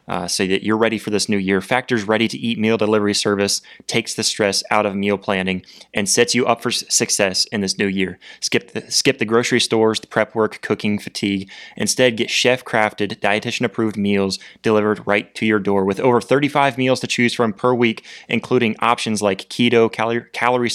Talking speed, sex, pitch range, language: 195 wpm, male, 105-120 Hz, English